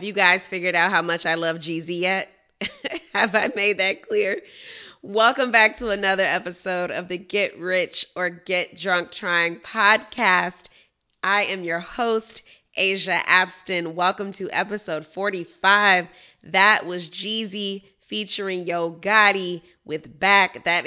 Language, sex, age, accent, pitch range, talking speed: English, female, 20-39, American, 175-200 Hz, 140 wpm